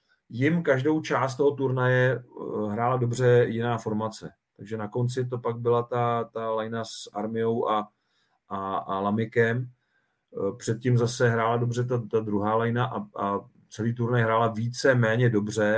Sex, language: male, Czech